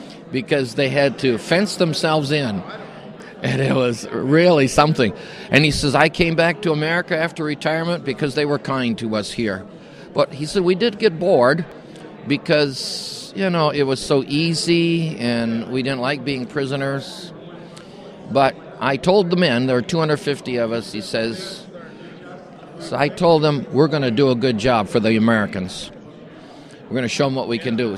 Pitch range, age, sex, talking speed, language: 125-170 Hz, 50-69, male, 175 wpm, English